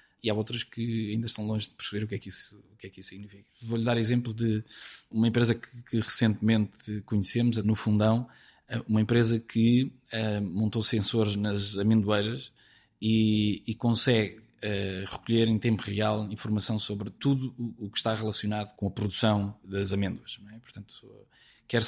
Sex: male